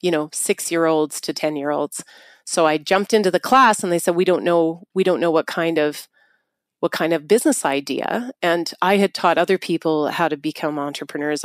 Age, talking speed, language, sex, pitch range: 30-49, 220 wpm, English, female, 160-195 Hz